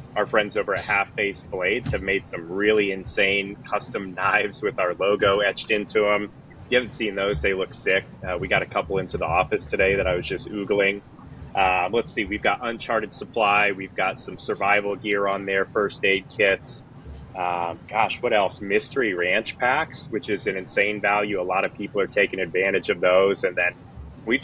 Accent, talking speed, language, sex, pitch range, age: American, 200 wpm, English, male, 95-110 Hz, 30-49